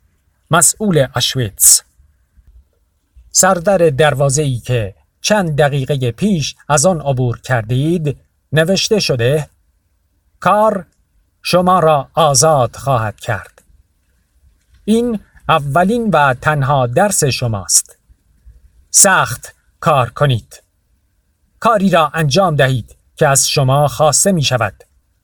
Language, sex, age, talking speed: Persian, male, 50-69, 95 wpm